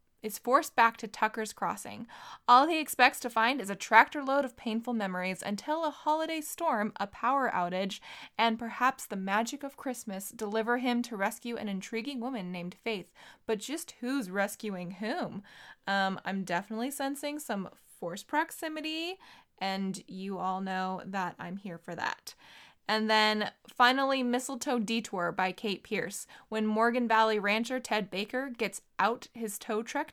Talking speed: 160 wpm